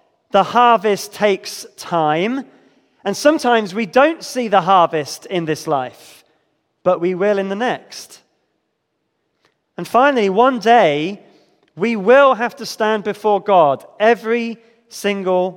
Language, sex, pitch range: English, male, 175-225 Hz